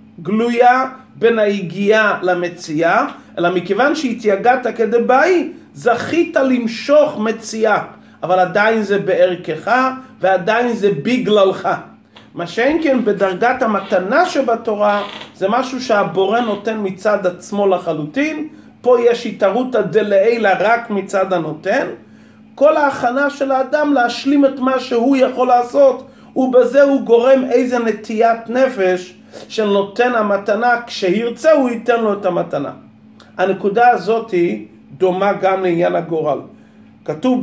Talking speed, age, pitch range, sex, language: 110 wpm, 40-59, 190-245 Hz, male, Hebrew